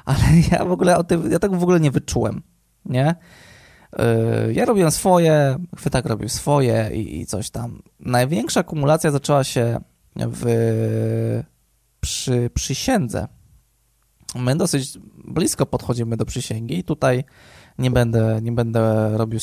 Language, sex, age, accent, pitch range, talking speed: Polish, male, 20-39, native, 115-150 Hz, 135 wpm